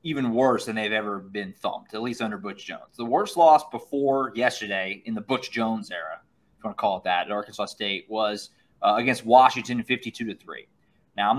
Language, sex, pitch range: English, male, 110-130 Hz